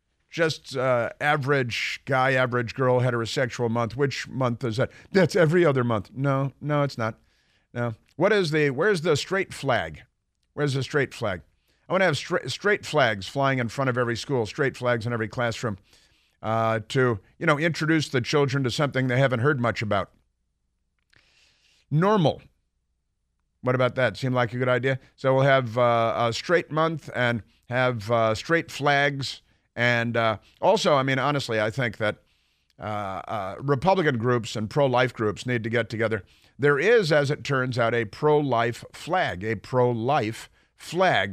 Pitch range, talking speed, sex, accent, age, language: 115-140 Hz, 170 wpm, male, American, 50-69, English